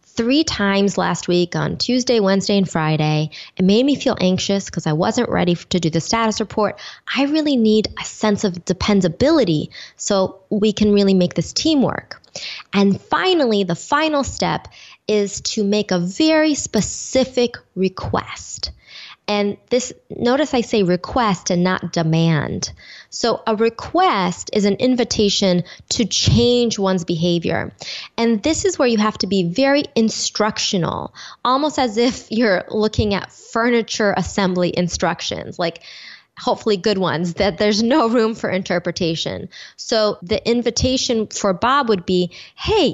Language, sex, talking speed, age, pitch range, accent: English, female, 150 wpm, 20-39, 185-245 Hz, American